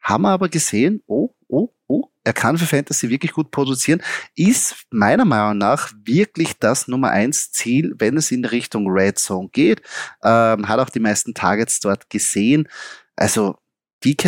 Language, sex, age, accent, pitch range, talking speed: German, male, 30-49, German, 115-155 Hz, 170 wpm